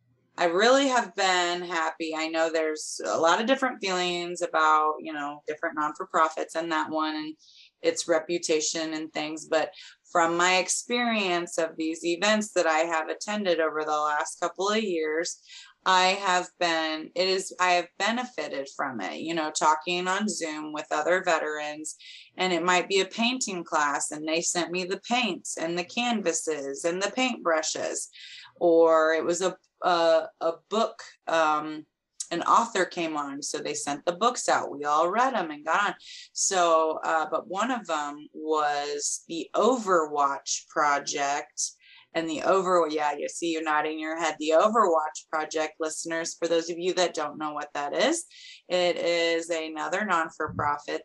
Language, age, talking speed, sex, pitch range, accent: English, 20-39, 170 wpm, female, 155-180 Hz, American